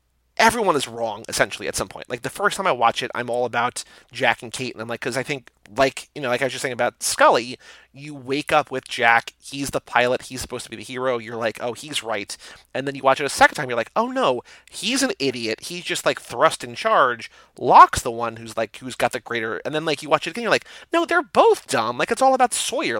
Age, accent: 30-49, American